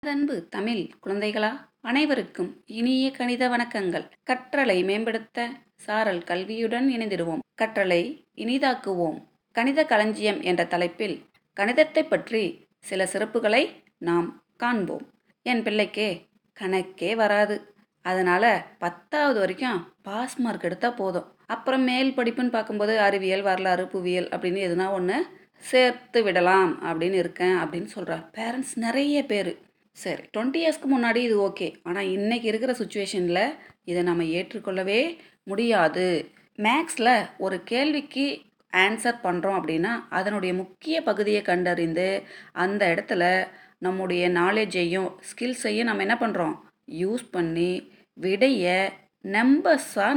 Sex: female